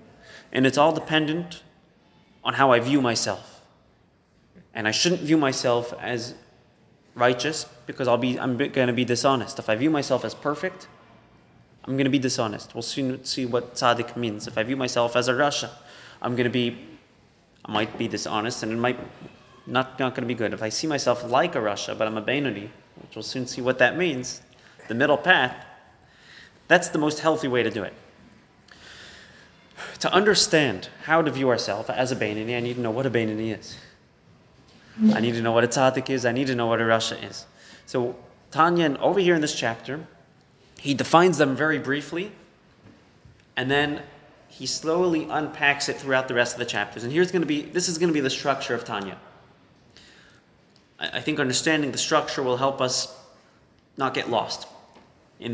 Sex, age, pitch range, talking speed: male, 30-49, 120-150 Hz, 185 wpm